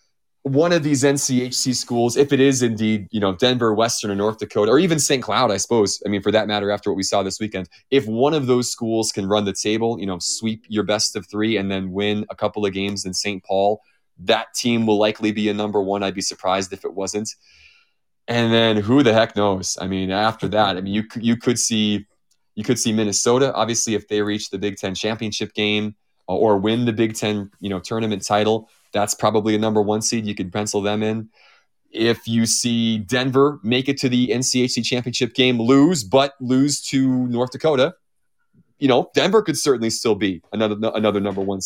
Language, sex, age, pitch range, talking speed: English, male, 20-39, 100-120 Hz, 215 wpm